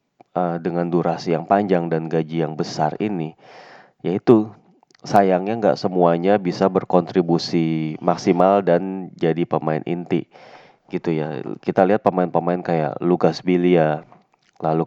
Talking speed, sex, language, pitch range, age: 115 wpm, male, Indonesian, 85-95 Hz, 30-49